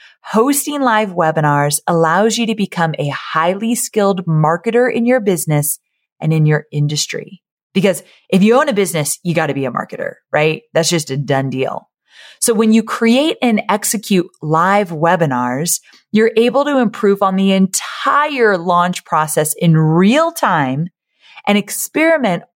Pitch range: 165-230 Hz